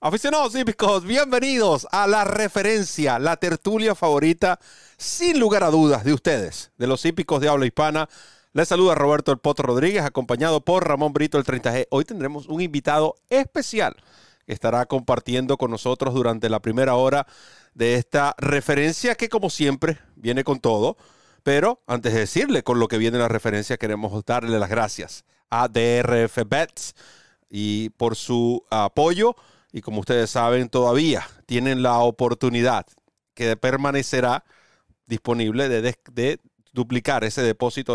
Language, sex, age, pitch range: Spanish, male, 40-59, 115-150 Hz